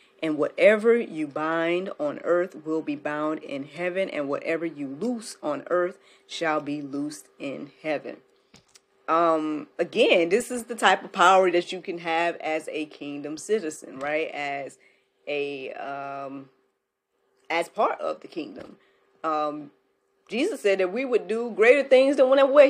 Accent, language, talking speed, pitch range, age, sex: American, English, 155 wpm, 160-265 Hz, 30-49, female